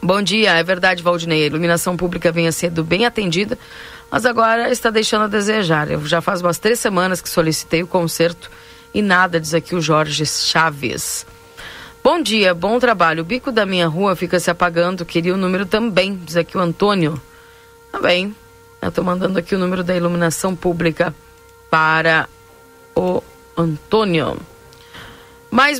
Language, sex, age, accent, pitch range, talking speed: Portuguese, female, 40-59, Brazilian, 165-205 Hz, 165 wpm